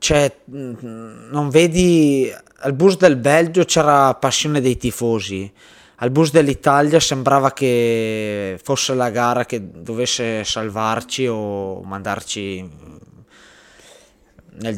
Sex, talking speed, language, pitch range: male, 100 wpm, Italian, 105-125 Hz